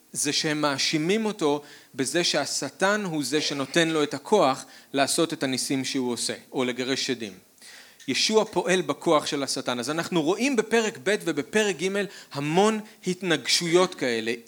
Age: 40-59